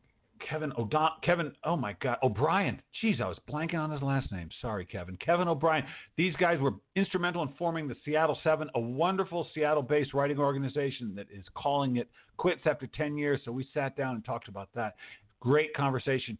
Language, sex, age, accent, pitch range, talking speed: English, male, 50-69, American, 115-155 Hz, 190 wpm